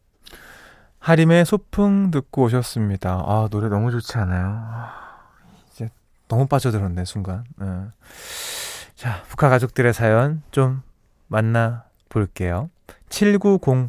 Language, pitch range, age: Korean, 105-160 Hz, 20-39